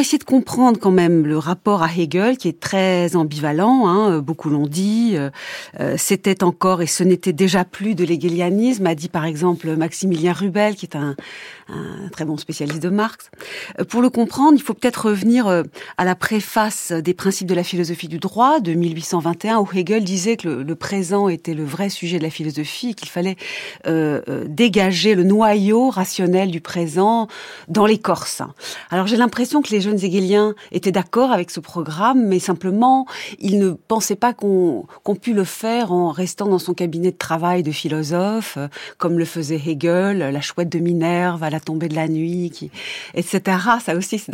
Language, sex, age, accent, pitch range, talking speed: French, female, 40-59, French, 170-205 Hz, 185 wpm